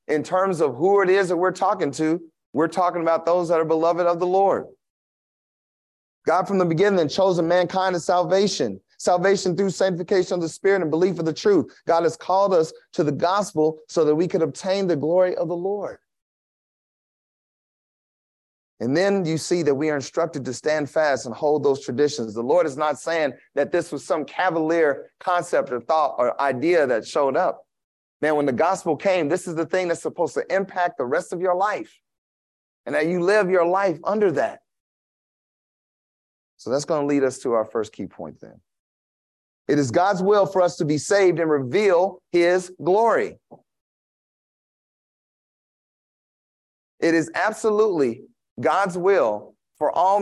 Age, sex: 30-49, male